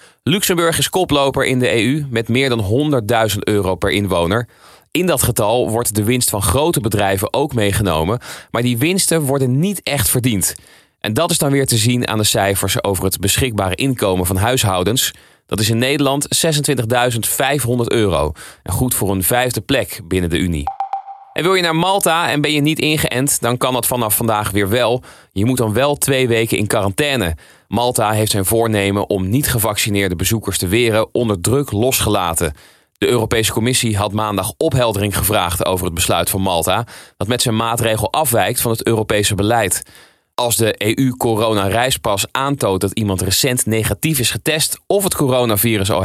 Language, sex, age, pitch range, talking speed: Dutch, male, 20-39, 100-135 Hz, 175 wpm